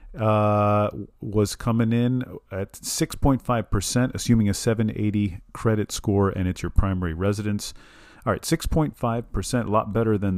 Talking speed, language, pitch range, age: 175 wpm, English, 85-110 Hz, 40-59